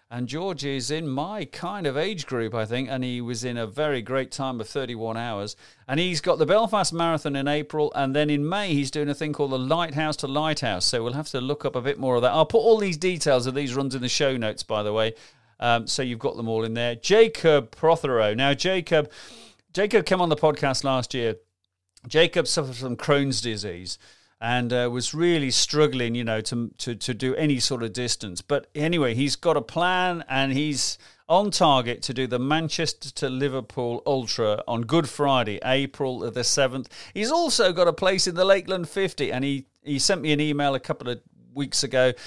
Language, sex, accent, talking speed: English, male, British, 215 wpm